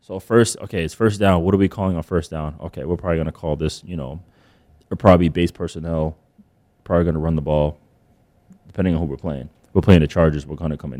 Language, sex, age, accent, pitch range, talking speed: English, male, 20-39, American, 85-105 Hz, 255 wpm